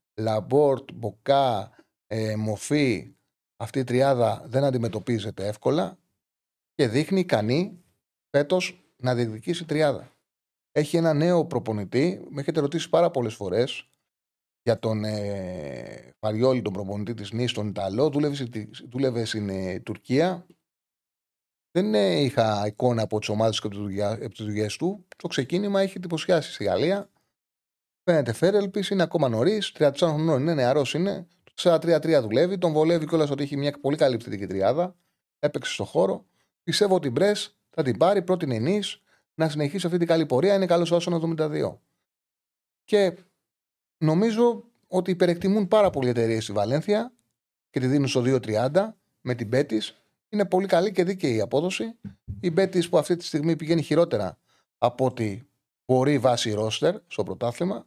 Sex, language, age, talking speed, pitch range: male, Greek, 30-49, 145 wpm, 115-175 Hz